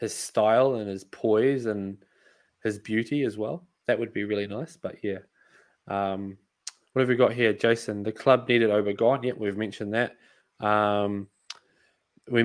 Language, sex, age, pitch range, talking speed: English, male, 20-39, 105-125 Hz, 170 wpm